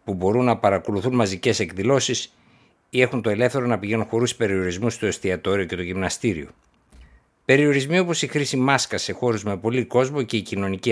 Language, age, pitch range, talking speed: Greek, 60-79, 100-135 Hz, 175 wpm